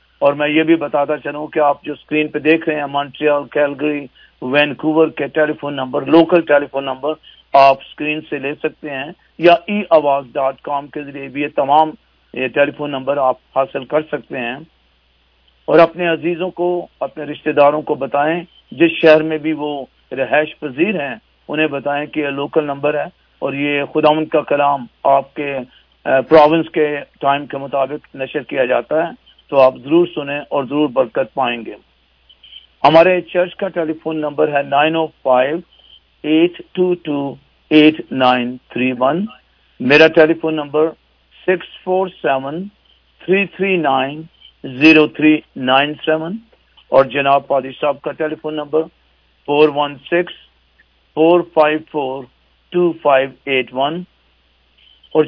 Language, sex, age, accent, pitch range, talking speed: English, male, 50-69, Indian, 135-155 Hz, 110 wpm